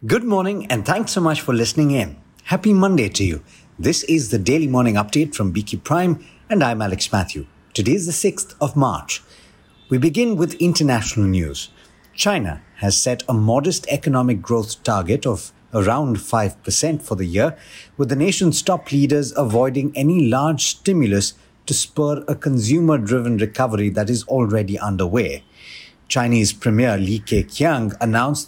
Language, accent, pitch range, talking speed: English, Indian, 105-145 Hz, 155 wpm